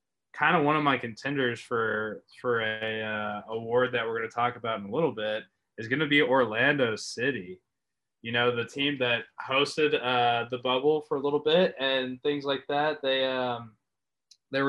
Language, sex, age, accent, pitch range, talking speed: English, male, 20-39, American, 110-135 Hz, 190 wpm